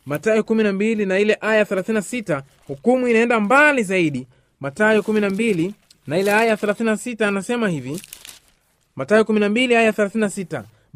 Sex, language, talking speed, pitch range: male, Swahili, 120 wpm, 185-240 Hz